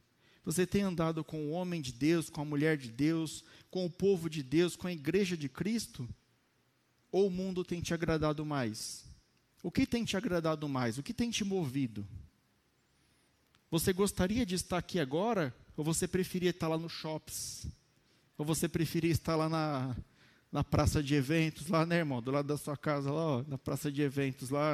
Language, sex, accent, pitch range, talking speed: Portuguese, male, Brazilian, 140-185 Hz, 190 wpm